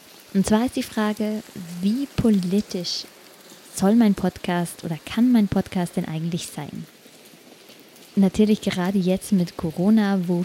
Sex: female